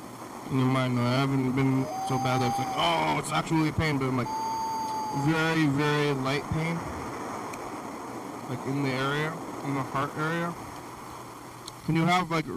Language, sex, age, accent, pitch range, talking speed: English, male, 20-39, American, 130-150 Hz, 165 wpm